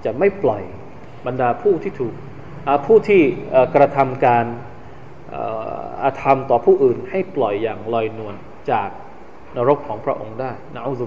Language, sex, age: Thai, male, 20-39